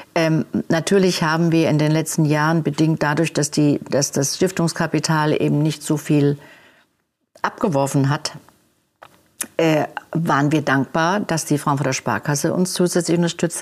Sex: female